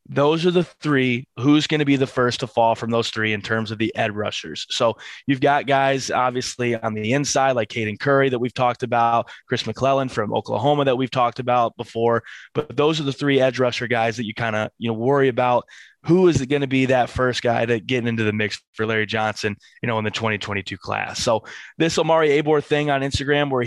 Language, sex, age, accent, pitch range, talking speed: English, male, 20-39, American, 120-140 Hz, 235 wpm